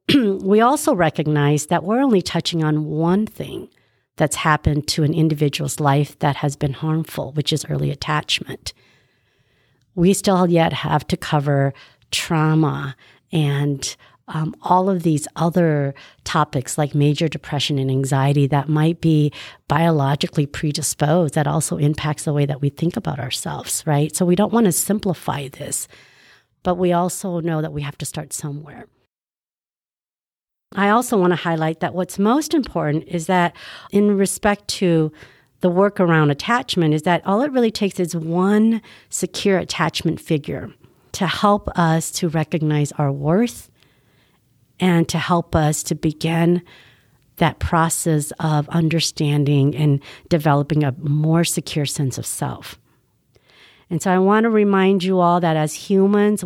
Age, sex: 50-69, female